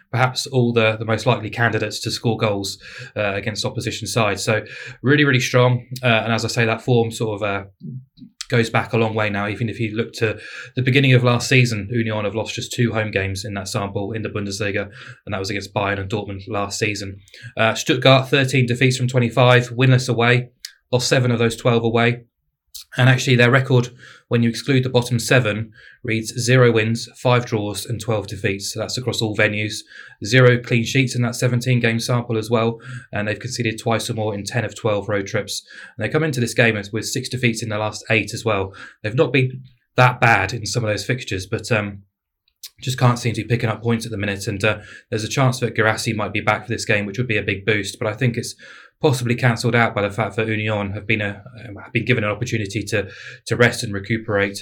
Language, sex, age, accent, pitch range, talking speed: English, male, 20-39, British, 105-120 Hz, 225 wpm